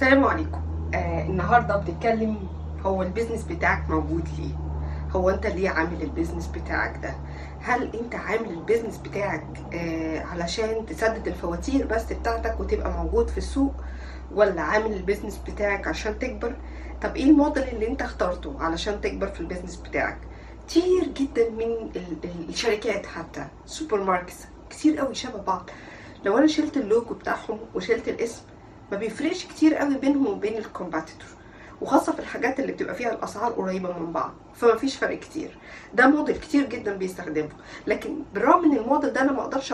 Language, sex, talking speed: Arabic, female, 150 wpm